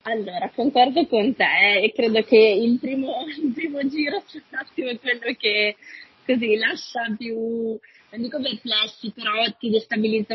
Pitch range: 210-260 Hz